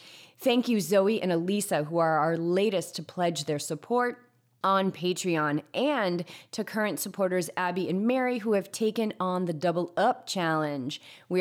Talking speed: 165 wpm